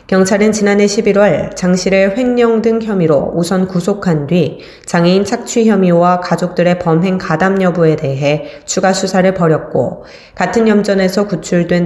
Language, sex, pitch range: Korean, female, 165-200 Hz